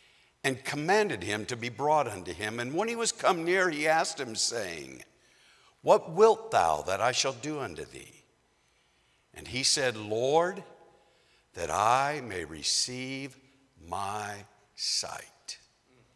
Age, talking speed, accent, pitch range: 60-79, 135 wpm, American, 120-165 Hz